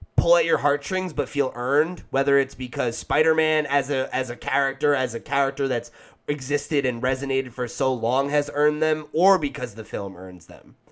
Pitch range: 115-155 Hz